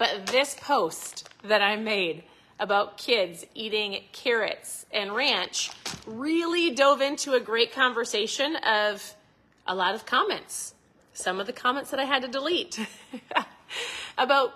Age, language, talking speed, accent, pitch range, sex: 30-49, English, 135 wpm, American, 220-285 Hz, female